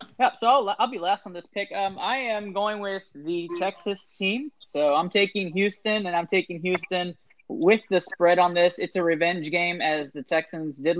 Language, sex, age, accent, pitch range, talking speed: English, male, 20-39, American, 150-185 Hz, 205 wpm